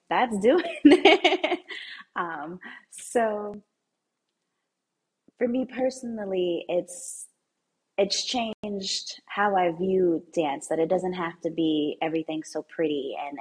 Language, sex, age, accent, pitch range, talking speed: English, female, 20-39, American, 155-210 Hz, 110 wpm